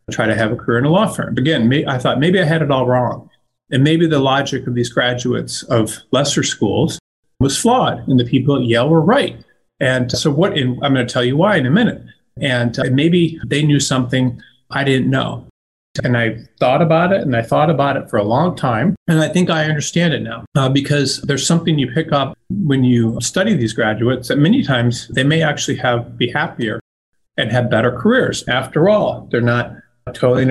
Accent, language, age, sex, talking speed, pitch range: American, English, 40-59, male, 220 wpm, 115-150 Hz